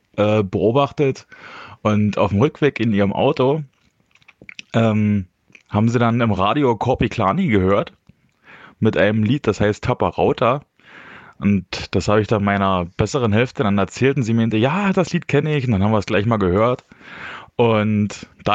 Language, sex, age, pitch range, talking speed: German, male, 20-39, 100-135 Hz, 170 wpm